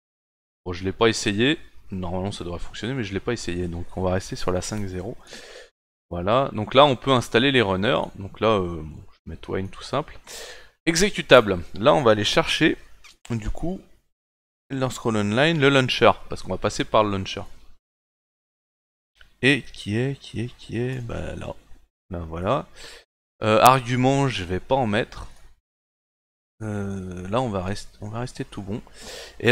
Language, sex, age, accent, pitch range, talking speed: French, male, 30-49, French, 95-125 Hz, 180 wpm